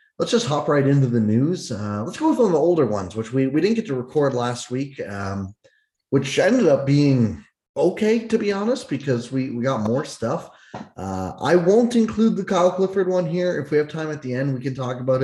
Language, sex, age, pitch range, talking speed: English, male, 30-49, 105-150 Hz, 230 wpm